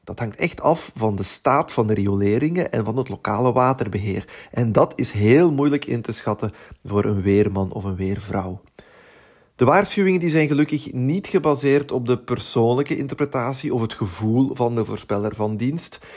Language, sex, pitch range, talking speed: Dutch, male, 105-145 Hz, 175 wpm